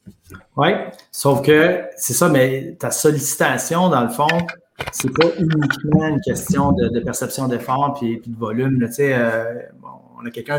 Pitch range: 120-140 Hz